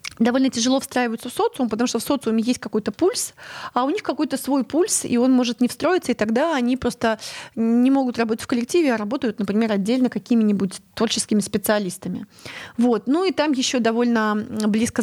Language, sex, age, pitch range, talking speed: Russian, female, 20-39, 215-270 Hz, 185 wpm